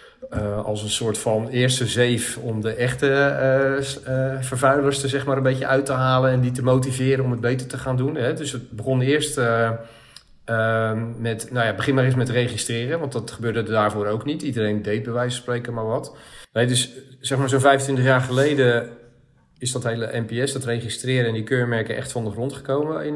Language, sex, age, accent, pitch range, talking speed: Dutch, male, 40-59, Dutch, 110-130 Hz, 200 wpm